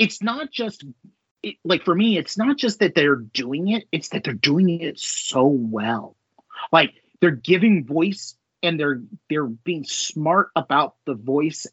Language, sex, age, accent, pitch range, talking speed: English, male, 30-49, American, 135-220 Hz, 170 wpm